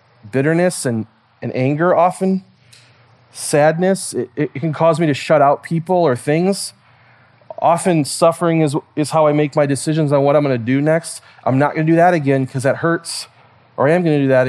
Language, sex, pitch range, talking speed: English, male, 125-155 Hz, 195 wpm